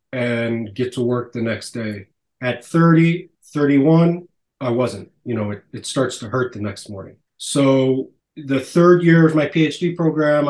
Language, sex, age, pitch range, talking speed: English, male, 30-49, 120-140 Hz, 170 wpm